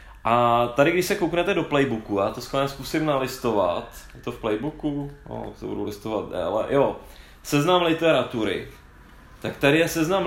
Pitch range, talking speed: 110-150 Hz, 165 wpm